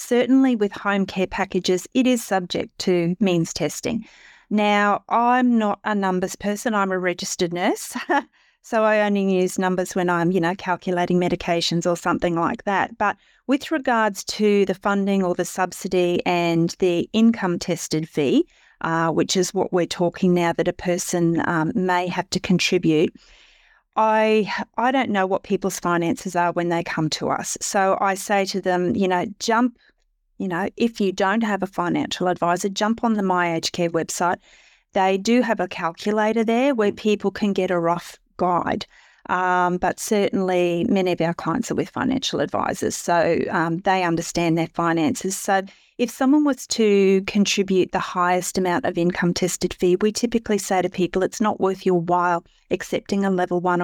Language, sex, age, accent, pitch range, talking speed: English, female, 40-59, Australian, 175-210 Hz, 175 wpm